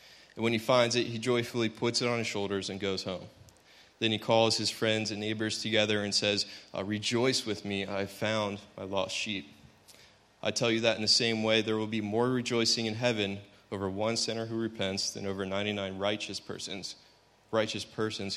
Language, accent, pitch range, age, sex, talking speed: English, American, 105-120 Hz, 20-39, male, 200 wpm